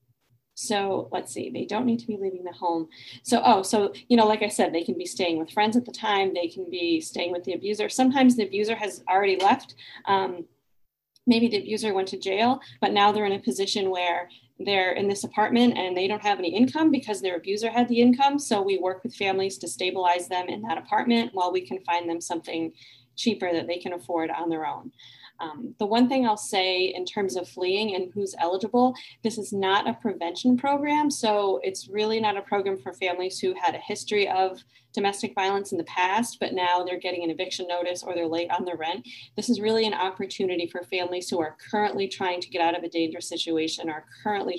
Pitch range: 175-210 Hz